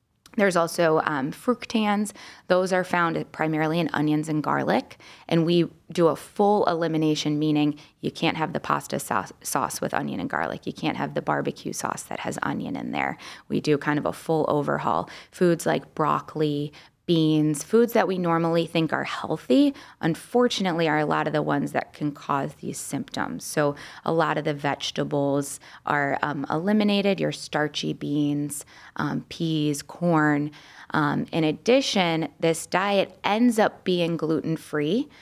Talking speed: 160 wpm